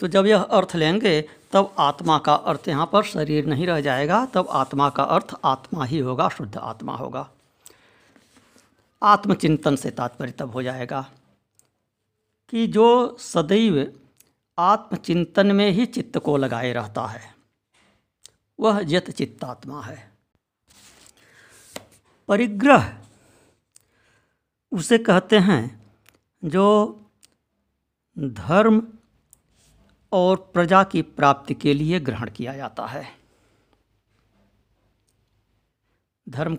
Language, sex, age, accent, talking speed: Hindi, female, 60-79, native, 105 wpm